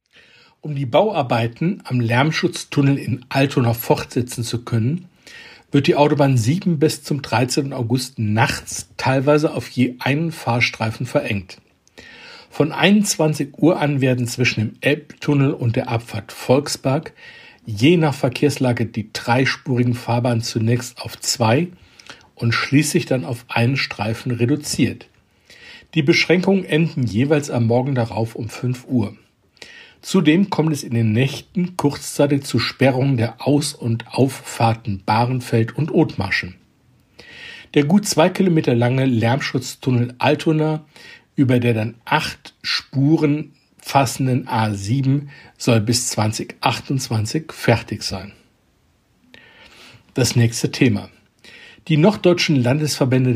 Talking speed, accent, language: 115 wpm, German, German